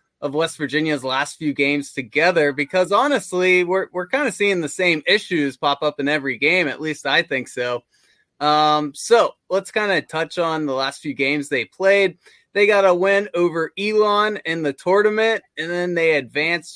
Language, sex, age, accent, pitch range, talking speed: English, male, 20-39, American, 150-190 Hz, 190 wpm